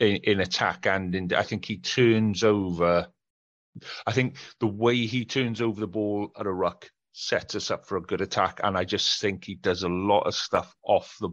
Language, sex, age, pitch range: English, male, 40-59, 85-95 Hz